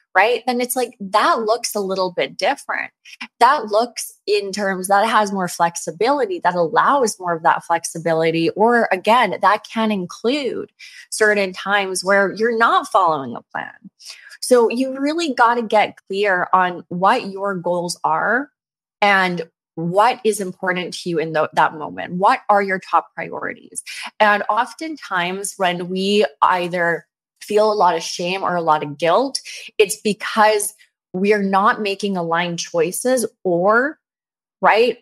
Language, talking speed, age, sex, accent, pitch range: English, 150 wpm, 20-39, female, American, 165-205 Hz